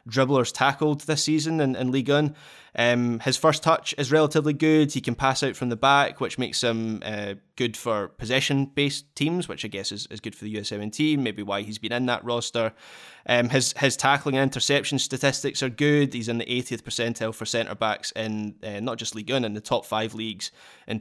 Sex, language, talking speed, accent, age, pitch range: male, English, 210 wpm, British, 20-39, 115-140 Hz